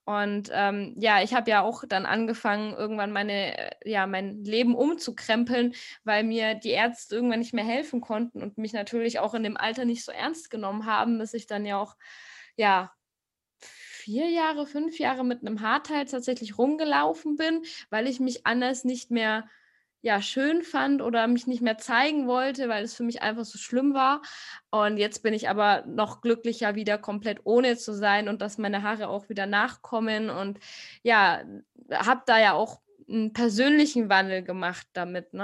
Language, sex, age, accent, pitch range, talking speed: German, female, 20-39, German, 205-245 Hz, 180 wpm